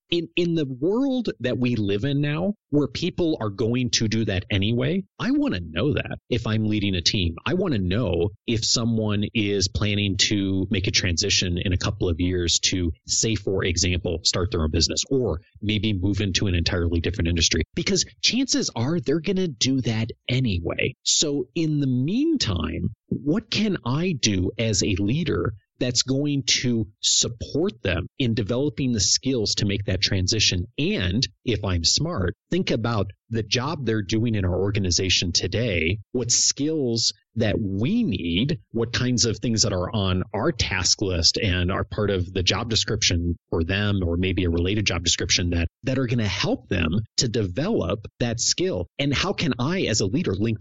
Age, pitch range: 30-49, 95-125 Hz